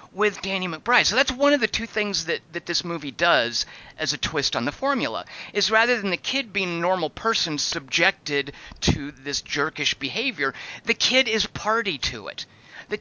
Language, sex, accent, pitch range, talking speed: English, male, American, 150-220 Hz, 195 wpm